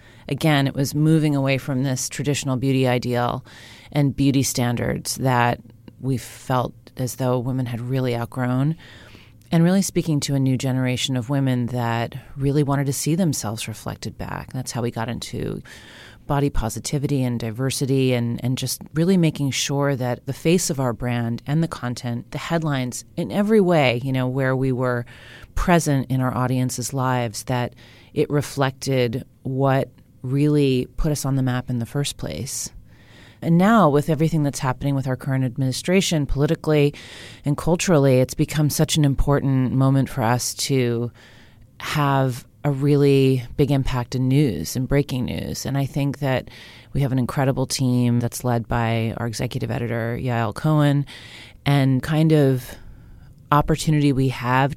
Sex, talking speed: female, 160 wpm